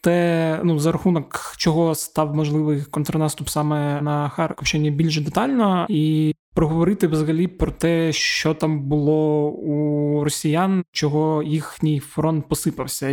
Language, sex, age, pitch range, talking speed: Ukrainian, male, 20-39, 150-165 Hz, 125 wpm